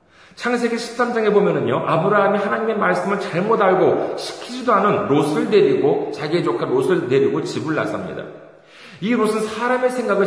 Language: Korean